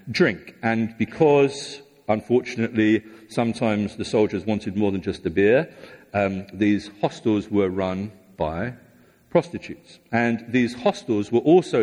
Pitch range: 105-135 Hz